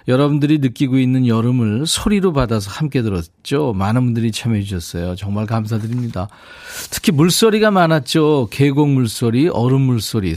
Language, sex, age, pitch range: Korean, male, 40-59, 110-150 Hz